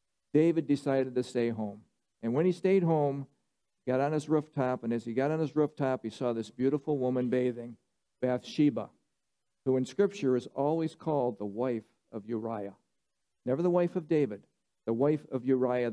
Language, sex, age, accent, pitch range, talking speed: English, male, 50-69, American, 120-150 Hz, 180 wpm